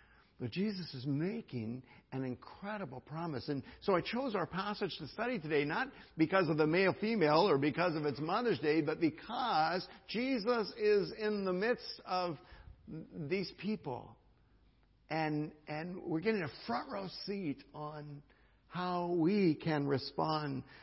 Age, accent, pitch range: 60-79, American, 145-190 Hz